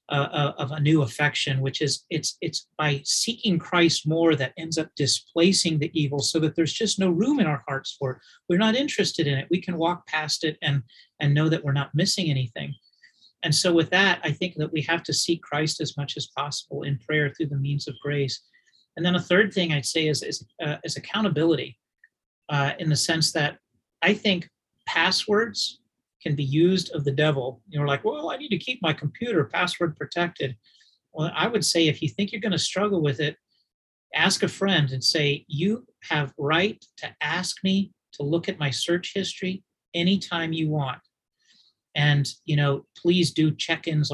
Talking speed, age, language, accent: 200 wpm, 40-59, English, American